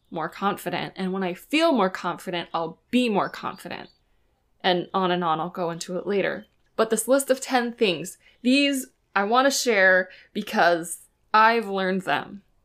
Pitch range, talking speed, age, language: 180-255 Hz, 170 wpm, 20-39, English